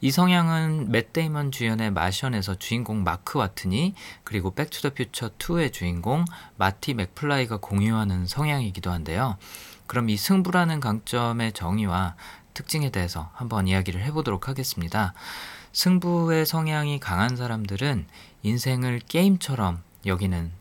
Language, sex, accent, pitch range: Korean, male, native, 95-140 Hz